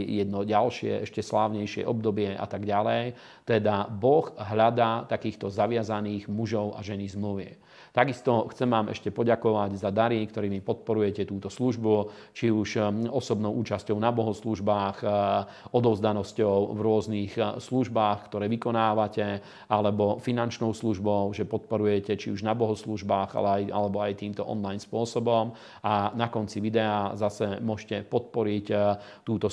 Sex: male